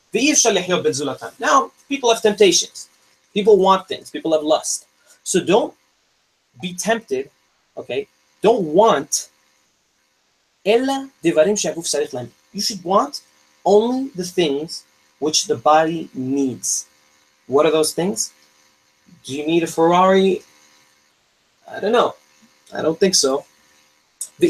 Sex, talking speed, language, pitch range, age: male, 95 wpm, English, 135-195 Hz, 30-49